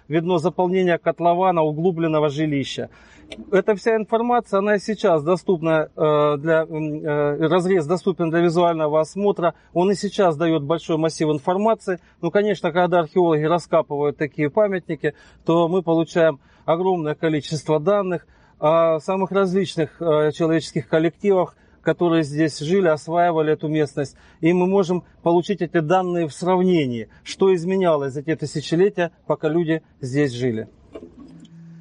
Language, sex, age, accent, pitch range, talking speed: Russian, male, 40-59, native, 160-195 Hz, 125 wpm